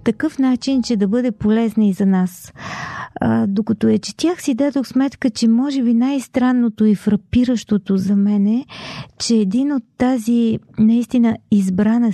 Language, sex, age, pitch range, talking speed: Bulgarian, female, 40-59, 195-225 Hz, 160 wpm